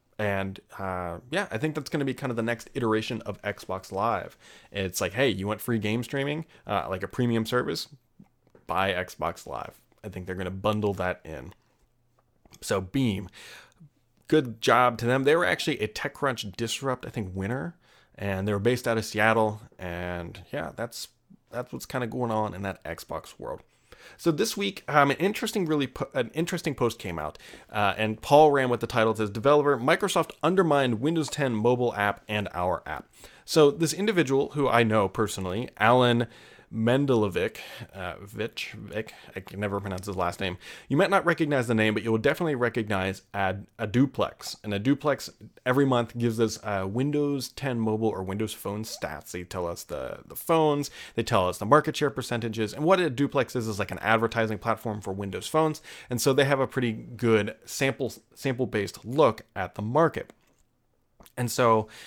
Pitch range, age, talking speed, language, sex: 105-140 Hz, 30-49, 190 wpm, English, male